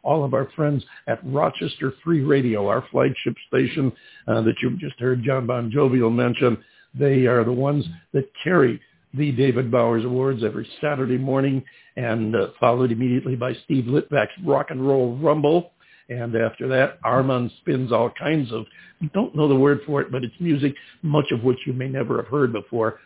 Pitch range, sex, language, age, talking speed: 120-140 Hz, male, English, 60-79, 185 wpm